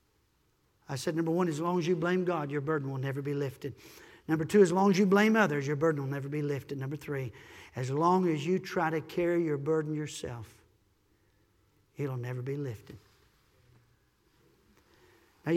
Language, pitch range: English, 150-215 Hz